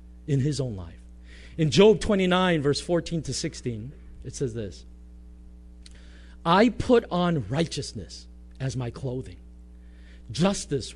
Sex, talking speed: male, 120 wpm